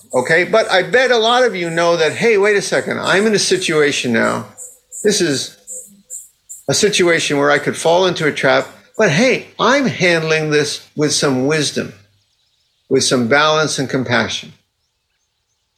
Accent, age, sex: American, 50-69, male